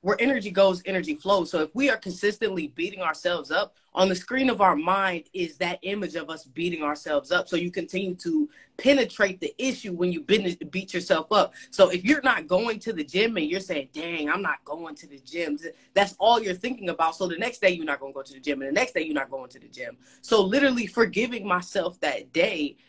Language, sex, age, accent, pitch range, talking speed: English, female, 20-39, American, 165-225 Hz, 235 wpm